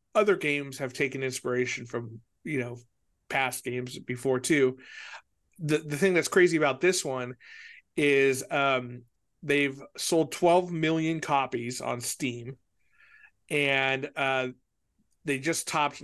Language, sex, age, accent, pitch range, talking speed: English, male, 40-59, American, 125-155 Hz, 125 wpm